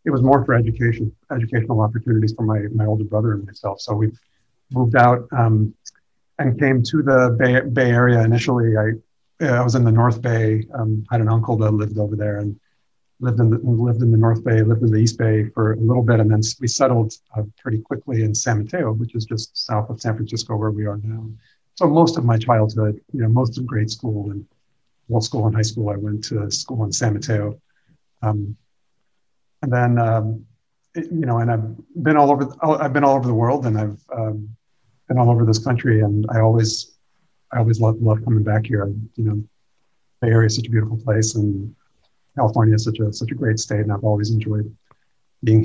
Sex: male